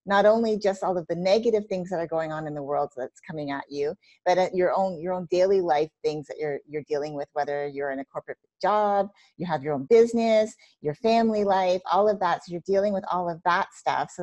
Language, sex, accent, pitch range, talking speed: English, female, American, 155-210 Hz, 250 wpm